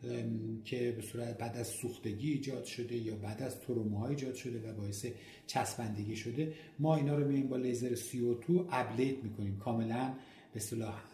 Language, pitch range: Persian, 120-150 Hz